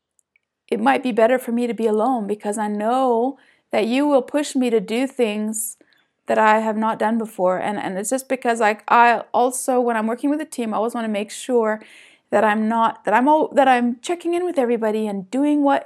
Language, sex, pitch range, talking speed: English, female, 215-265 Hz, 225 wpm